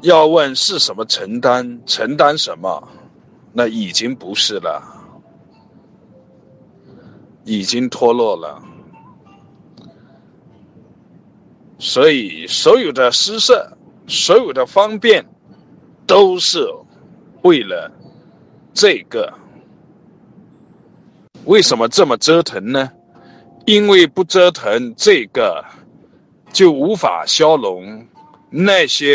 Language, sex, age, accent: Chinese, male, 50-69, native